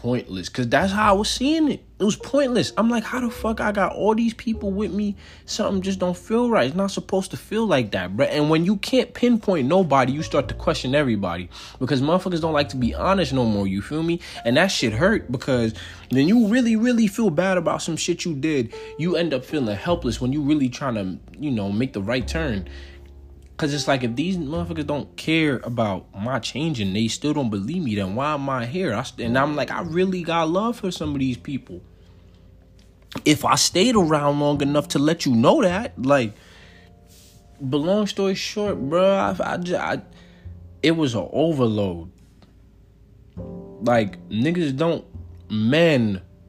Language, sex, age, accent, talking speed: English, male, 20-39, American, 195 wpm